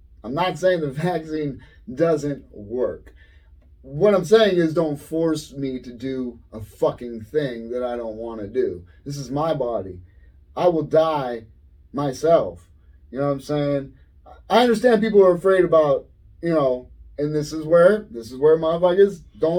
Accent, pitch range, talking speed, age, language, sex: American, 110-180 Hz, 170 wpm, 30-49, English, male